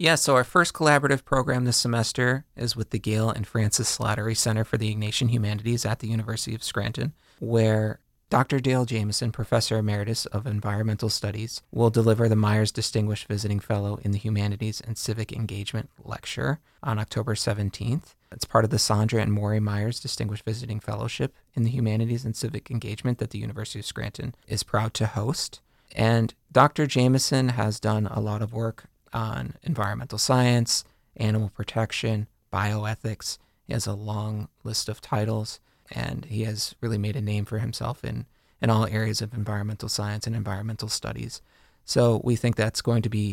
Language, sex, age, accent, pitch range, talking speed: English, male, 30-49, American, 105-120 Hz, 175 wpm